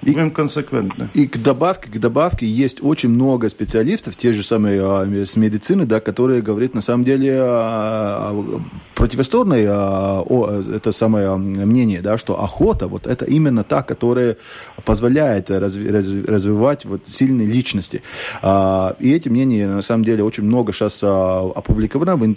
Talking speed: 135 wpm